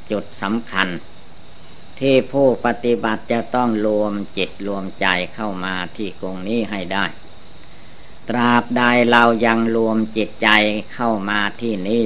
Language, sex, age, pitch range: Thai, female, 60-79, 90-115 Hz